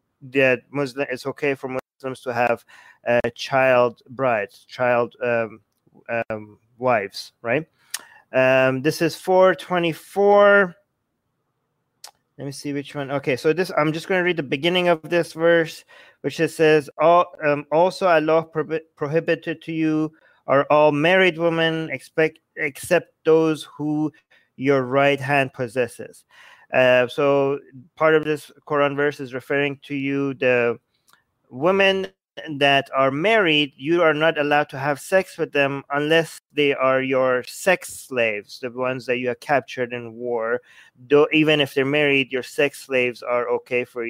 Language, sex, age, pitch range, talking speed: English, male, 30-49, 130-165 Hz, 155 wpm